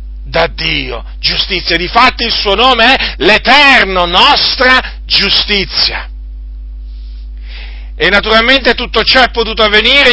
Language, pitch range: Italian, 180-265 Hz